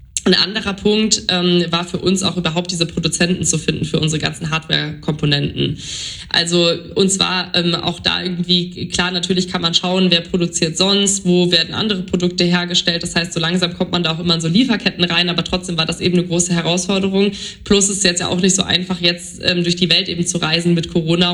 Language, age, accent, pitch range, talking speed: German, 20-39, German, 165-180 Hz, 215 wpm